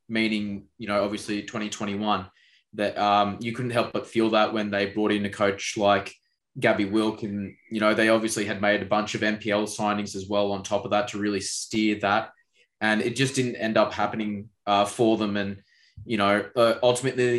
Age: 20-39